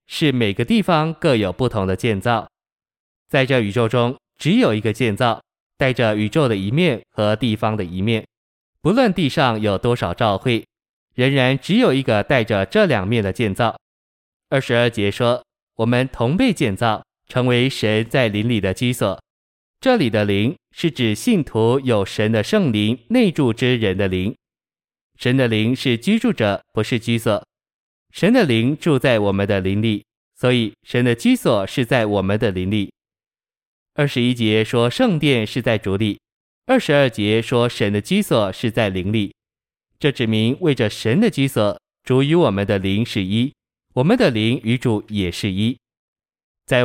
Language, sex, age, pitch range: Chinese, male, 20-39, 105-135 Hz